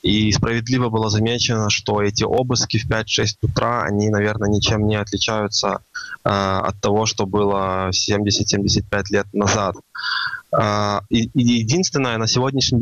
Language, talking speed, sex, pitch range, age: Russian, 130 wpm, male, 105-120 Hz, 20-39